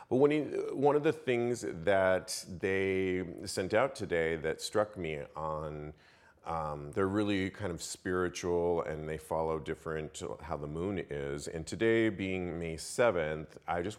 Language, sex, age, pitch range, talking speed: English, male, 40-59, 80-105 Hz, 150 wpm